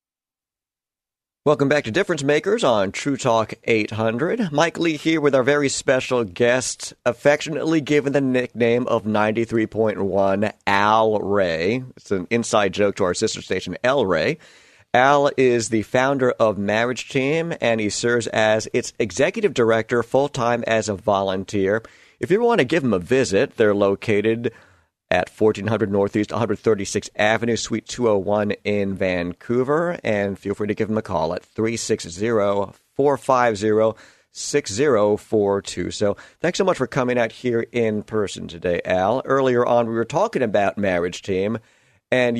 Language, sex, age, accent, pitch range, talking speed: English, male, 40-59, American, 105-125 Hz, 145 wpm